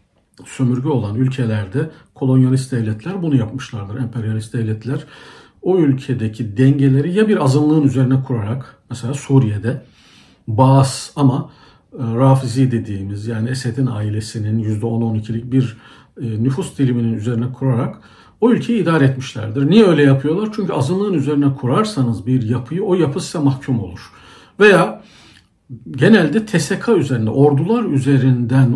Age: 60-79